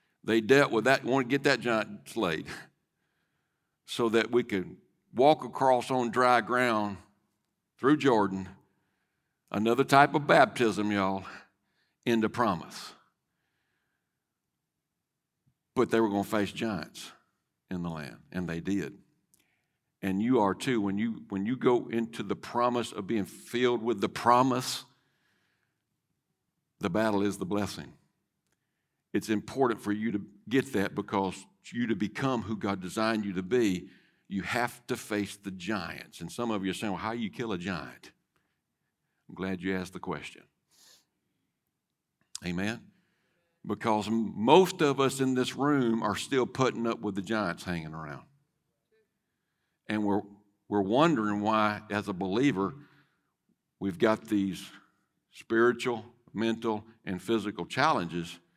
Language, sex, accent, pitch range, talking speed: English, male, American, 100-120 Hz, 140 wpm